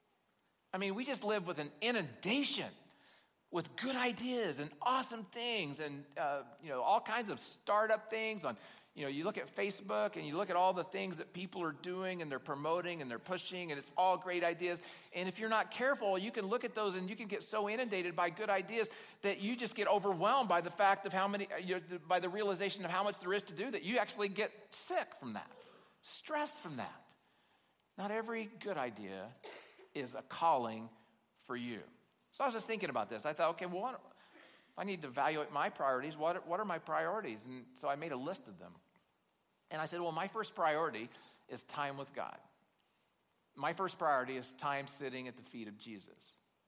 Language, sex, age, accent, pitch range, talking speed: English, male, 40-59, American, 145-210 Hz, 210 wpm